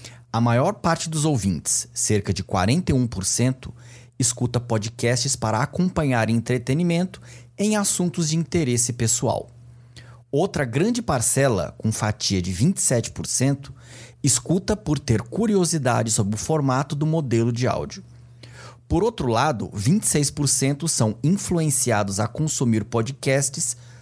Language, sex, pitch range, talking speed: Portuguese, male, 120-160 Hz, 110 wpm